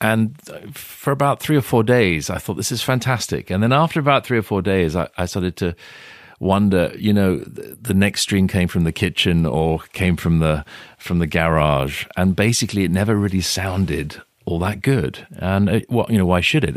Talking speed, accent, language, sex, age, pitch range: 210 wpm, British, English, male, 40-59, 80-105 Hz